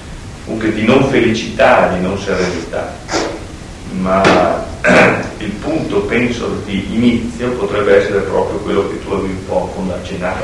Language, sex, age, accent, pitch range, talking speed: Italian, male, 40-59, native, 90-105 Hz, 140 wpm